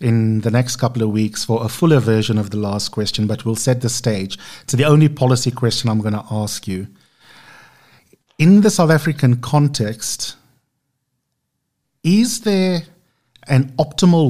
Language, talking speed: English, 160 wpm